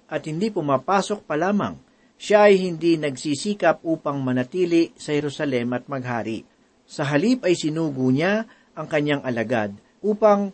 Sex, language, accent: male, Filipino, native